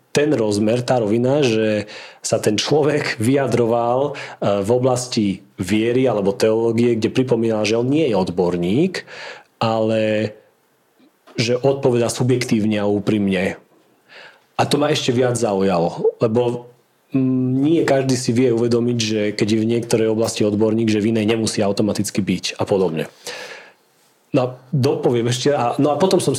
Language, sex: Slovak, male